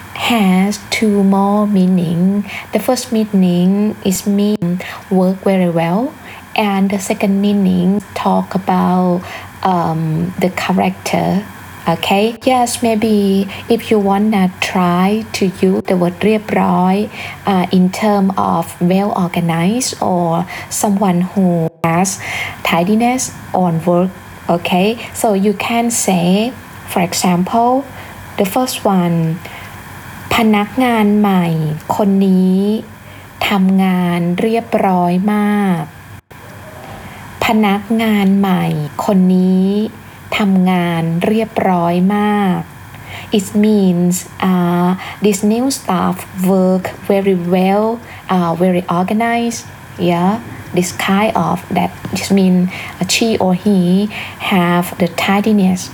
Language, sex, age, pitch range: Thai, female, 20-39, 175-210 Hz